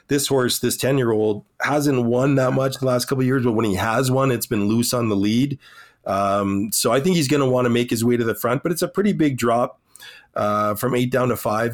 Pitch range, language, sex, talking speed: 115-145 Hz, English, male, 260 wpm